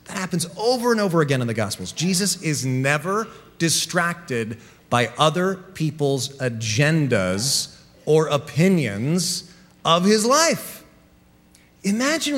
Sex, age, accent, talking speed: male, 40-59, American, 110 wpm